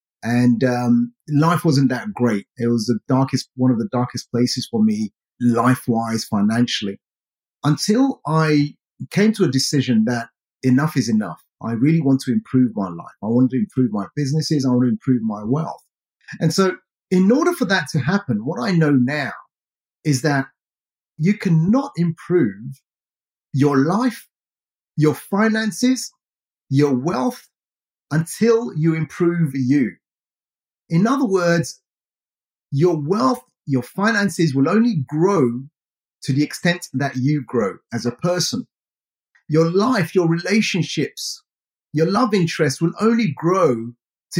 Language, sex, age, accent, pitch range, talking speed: English, male, 30-49, British, 125-190 Hz, 140 wpm